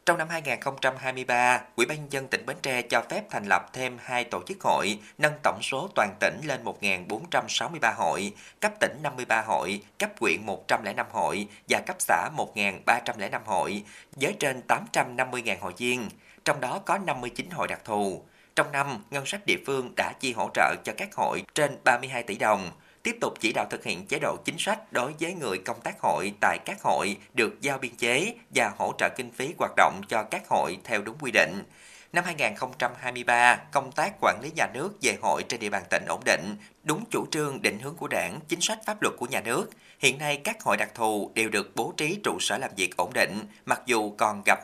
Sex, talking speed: male, 210 wpm